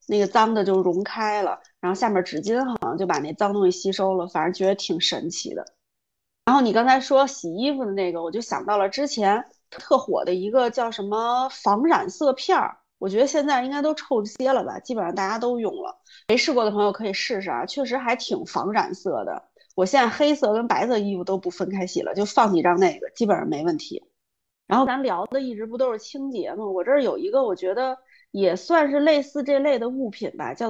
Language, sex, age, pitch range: Chinese, female, 30-49, 195-275 Hz